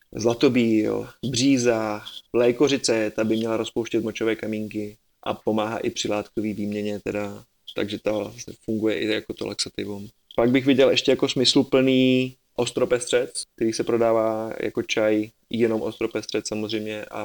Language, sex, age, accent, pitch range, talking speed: Czech, male, 20-39, native, 105-120 Hz, 140 wpm